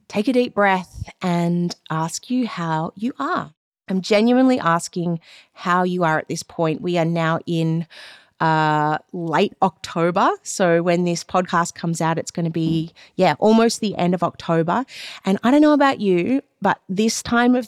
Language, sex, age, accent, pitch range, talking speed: English, female, 30-49, Australian, 160-195 Hz, 175 wpm